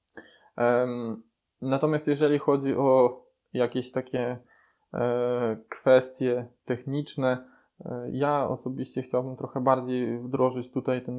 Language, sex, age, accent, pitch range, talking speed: Polish, male, 20-39, native, 125-140 Hz, 85 wpm